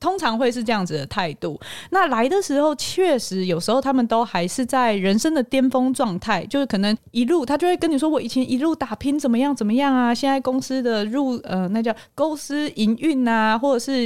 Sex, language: female, Chinese